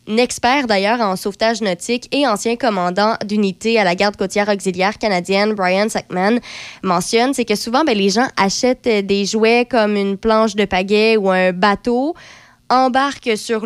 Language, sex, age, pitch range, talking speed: French, female, 20-39, 200-240 Hz, 165 wpm